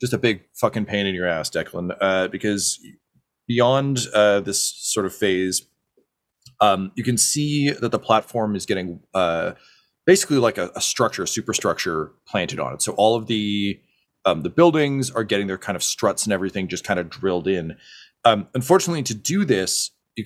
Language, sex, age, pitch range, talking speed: English, male, 30-49, 95-125 Hz, 185 wpm